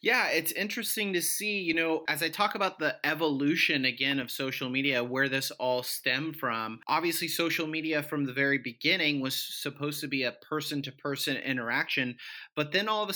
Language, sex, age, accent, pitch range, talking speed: English, male, 30-49, American, 140-170 Hz, 195 wpm